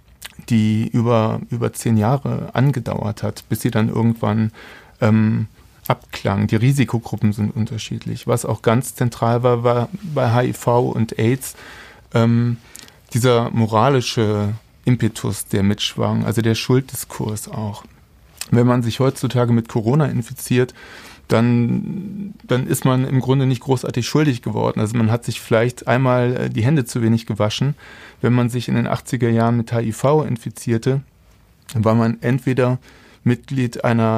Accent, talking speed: German, 140 wpm